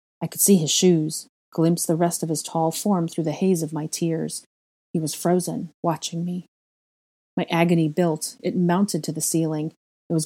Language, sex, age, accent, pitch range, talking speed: English, female, 30-49, American, 160-180 Hz, 195 wpm